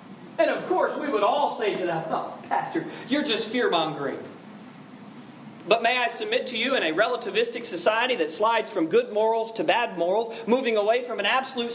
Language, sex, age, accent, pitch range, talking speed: English, male, 40-59, American, 220-310 Hz, 190 wpm